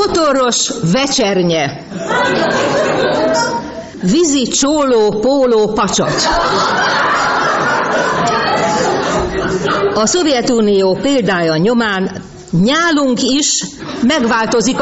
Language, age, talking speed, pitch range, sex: Hungarian, 50-69, 55 wpm, 190-270 Hz, female